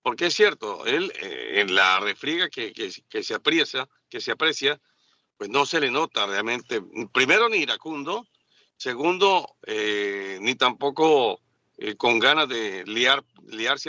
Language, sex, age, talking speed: Spanish, male, 50-69, 150 wpm